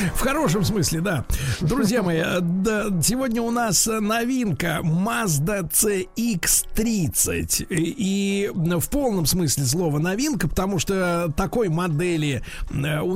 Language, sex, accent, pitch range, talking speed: Russian, male, native, 145-200 Hz, 105 wpm